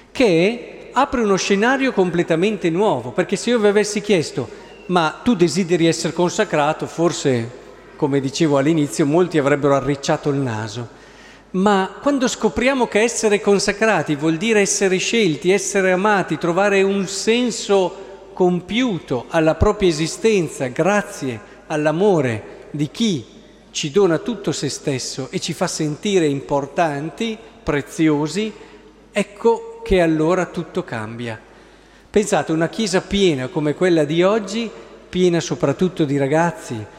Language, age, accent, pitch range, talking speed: Italian, 50-69, native, 155-205 Hz, 125 wpm